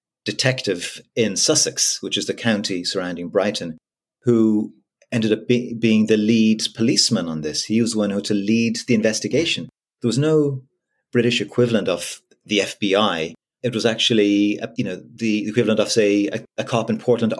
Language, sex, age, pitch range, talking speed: English, male, 30-49, 105-125 Hz, 175 wpm